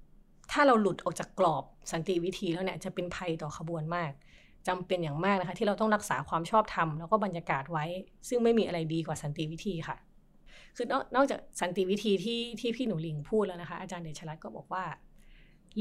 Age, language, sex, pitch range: 30-49, Thai, female, 165-215 Hz